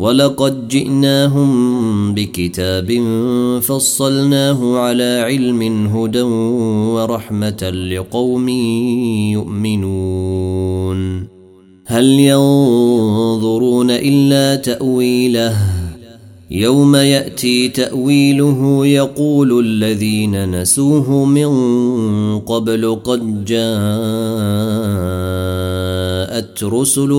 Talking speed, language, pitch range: 55 wpm, Arabic, 105-125 Hz